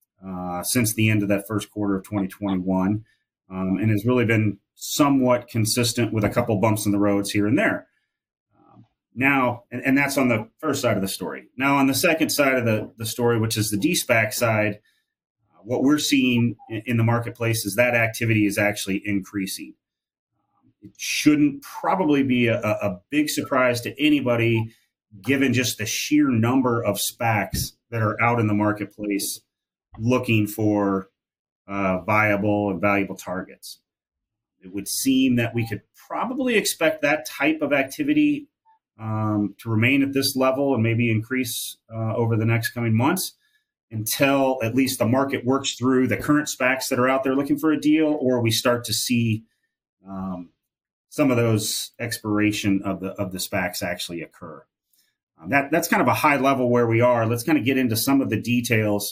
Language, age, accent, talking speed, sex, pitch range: English, 30-49, American, 185 wpm, male, 105-135 Hz